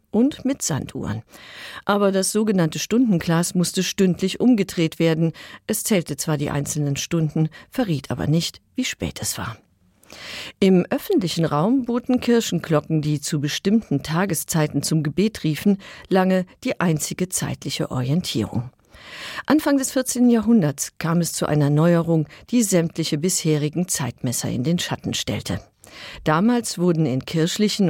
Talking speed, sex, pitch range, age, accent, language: 135 wpm, female, 150-205 Hz, 50-69, German, German